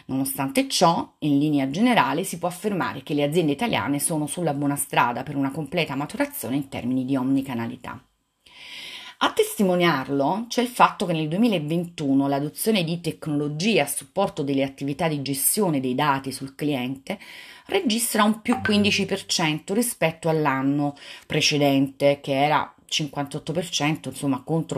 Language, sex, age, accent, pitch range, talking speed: Italian, female, 30-49, native, 140-195 Hz, 135 wpm